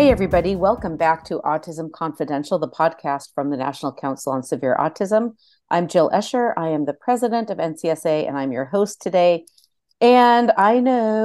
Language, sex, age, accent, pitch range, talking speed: English, female, 40-59, American, 155-225 Hz, 175 wpm